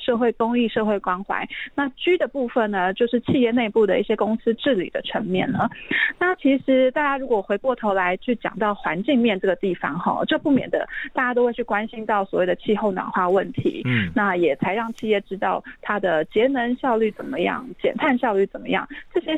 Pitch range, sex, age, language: 195-250 Hz, female, 30-49, Chinese